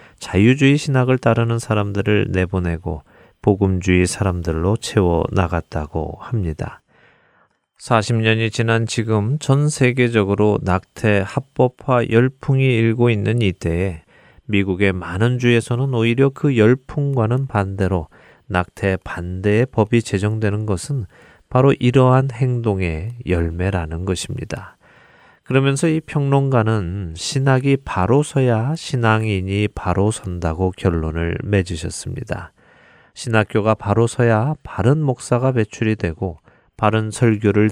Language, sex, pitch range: Korean, male, 90-125 Hz